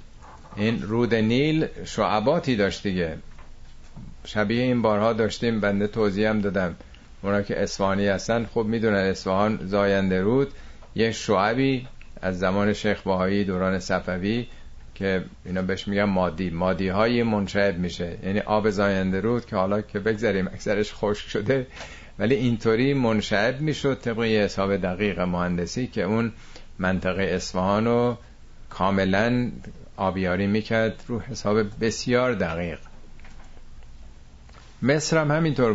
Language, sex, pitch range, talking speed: Persian, male, 90-115 Hz, 120 wpm